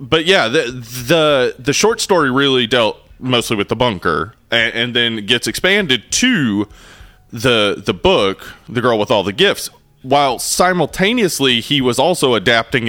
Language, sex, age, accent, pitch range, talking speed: English, male, 30-49, American, 105-140 Hz, 160 wpm